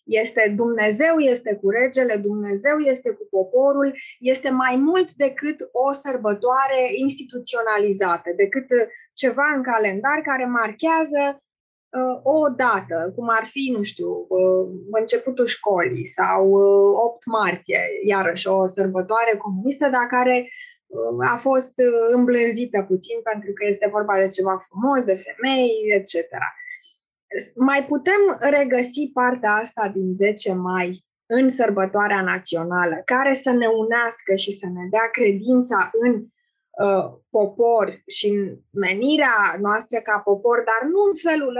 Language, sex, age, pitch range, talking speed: Romanian, female, 20-39, 205-275 Hz, 125 wpm